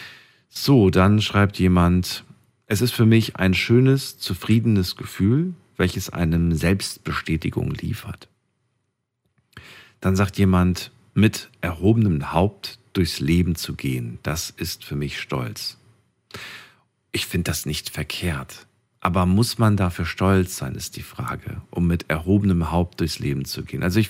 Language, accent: German, German